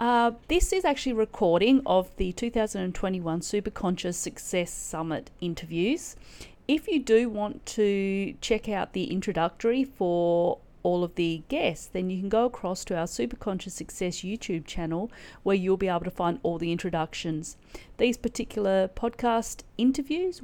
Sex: female